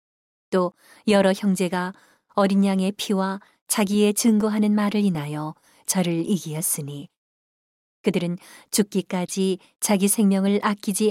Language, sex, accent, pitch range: Korean, female, native, 180-210 Hz